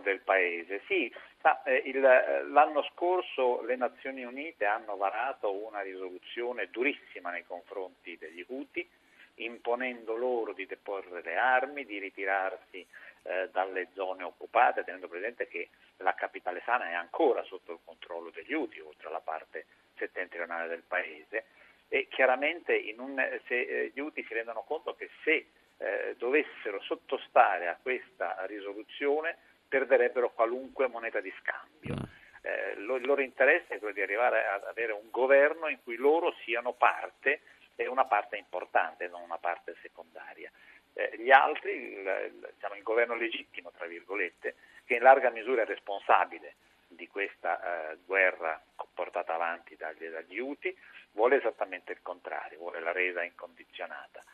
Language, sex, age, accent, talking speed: Italian, male, 50-69, native, 140 wpm